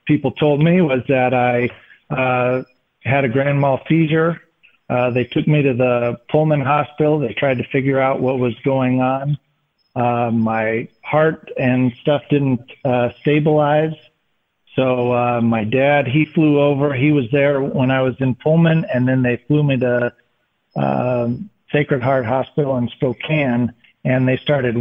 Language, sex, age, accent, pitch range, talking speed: English, male, 50-69, American, 125-145 Hz, 160 wpm